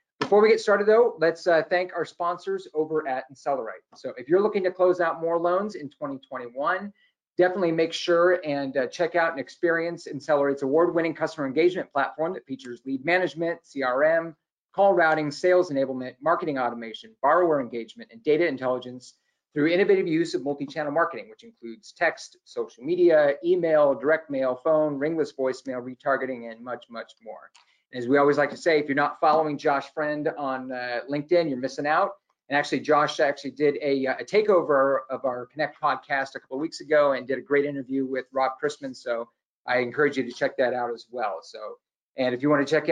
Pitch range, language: 130-180 Hz, English